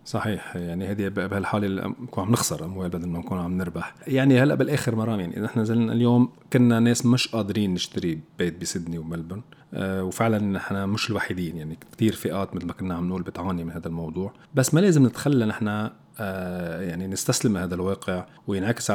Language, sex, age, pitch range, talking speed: Arabic, male, 40-59, 90-110 Hz, 175 wpm